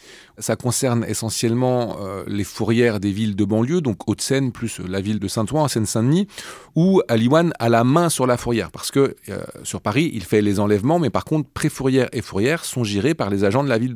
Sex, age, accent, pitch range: male, 40-59, French, 105-135 Hz